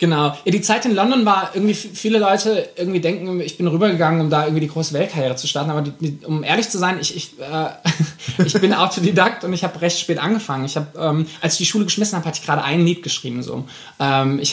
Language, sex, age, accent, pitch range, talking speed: German, male, 20-39, German, 145-170 Hz, 250 wpm